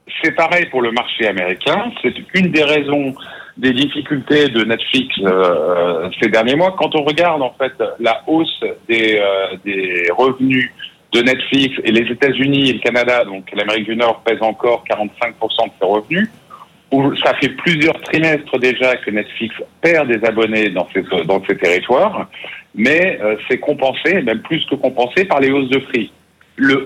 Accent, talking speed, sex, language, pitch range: French, 170 wpm, male, French, 115-145 Hz